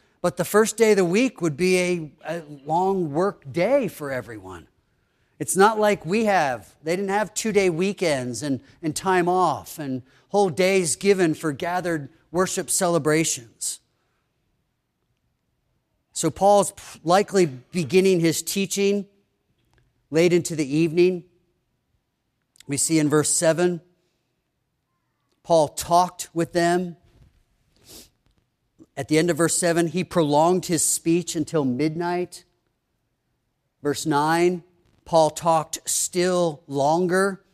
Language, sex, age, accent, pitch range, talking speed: English, male, 40-59, American, 140-180 Hz, 120 wpm